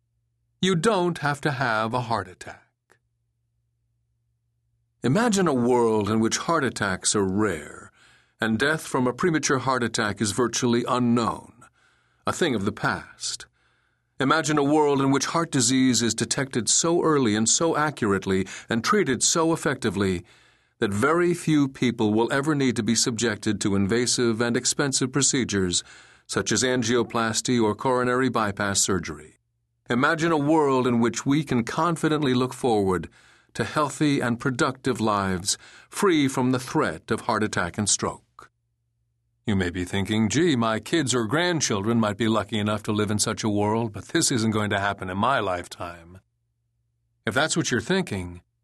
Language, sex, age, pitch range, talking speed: English, male, 50-69, 110-135 Hz, 160 wpm